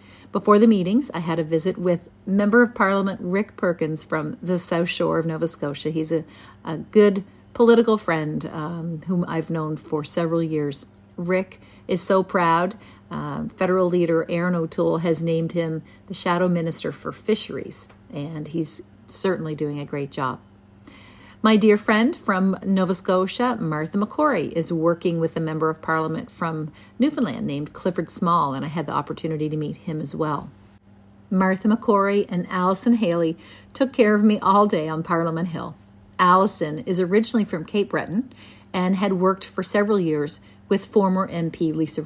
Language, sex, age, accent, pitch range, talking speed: English, female, 50-69, American, 155-195 Hz, 165 wpm